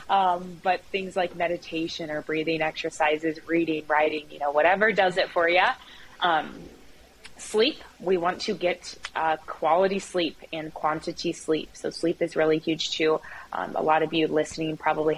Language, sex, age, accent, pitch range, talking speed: English, female, 20-39, American, 155-180 Hz, 165 wpm